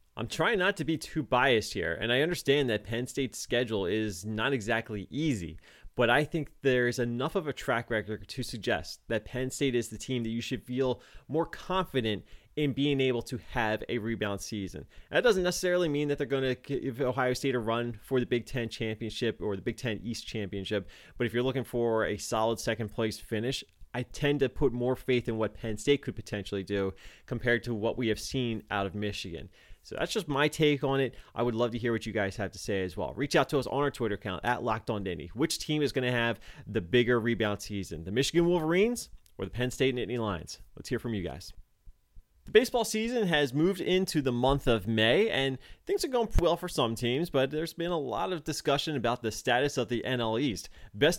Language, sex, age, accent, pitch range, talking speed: English, male, 20-39, American, 110-140 Hz, 225 wpm